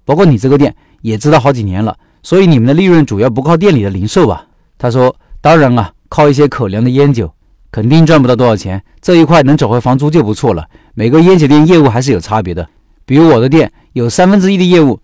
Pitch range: 110-160 Hz